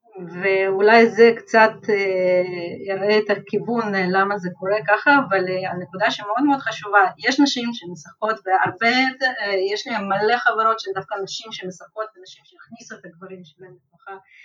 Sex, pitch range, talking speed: female, 195-260 Hz, 130 wpm